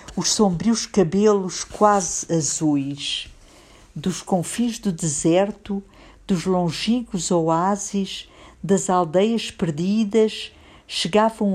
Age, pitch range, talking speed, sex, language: 50-69, 155-210 Hz, 85 wpm, female, English